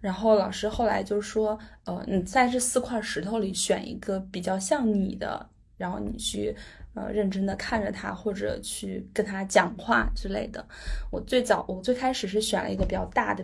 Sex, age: female, 10-29